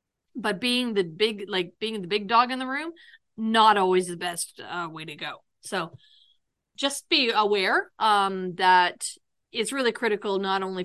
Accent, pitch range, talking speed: American, 175-215 Hz, 170 wpm